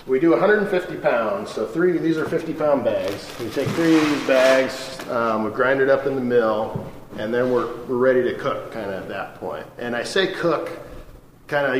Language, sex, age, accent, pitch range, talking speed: English, male, 40-59, American, 115-150 Hz, 225 wpm